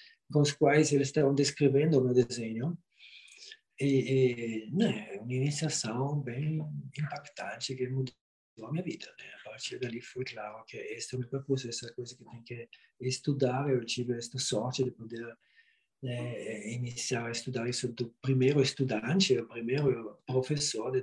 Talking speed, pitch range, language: 155 wpm, 120-145 Hz, Portuguese